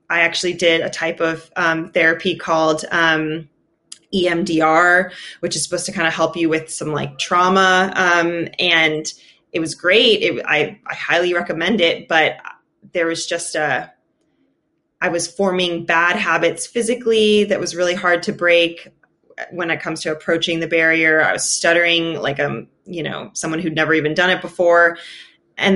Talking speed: 165 wpm